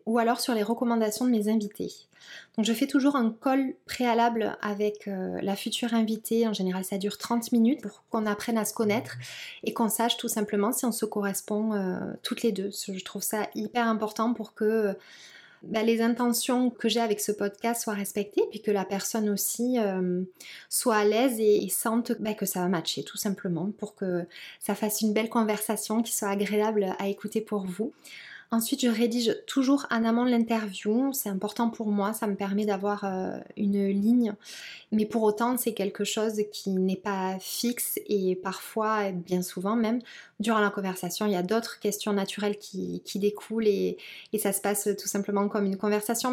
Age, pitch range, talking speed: 20-39, 200-230 Hz, 195 wpm